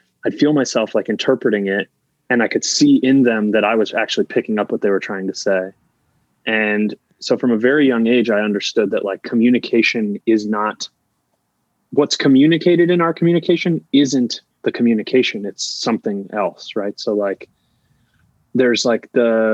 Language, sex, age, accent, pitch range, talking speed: English, male, 20-39, American, 100-130 Hz, 170 wpm